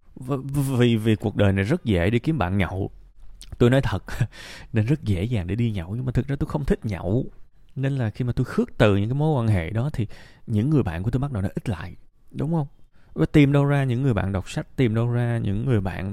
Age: 20-39